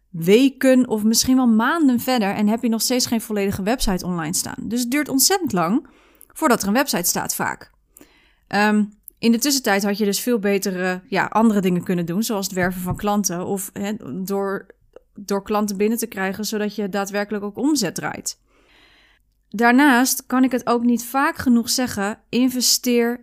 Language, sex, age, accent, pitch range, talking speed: Dutch, female, 30-49, Dutch, 200-250 Hz, 175 wpm